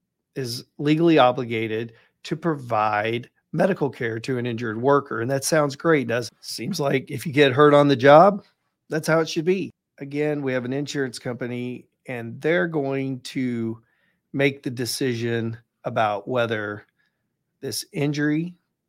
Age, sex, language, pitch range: 40-59, male, English, 125-150 Hz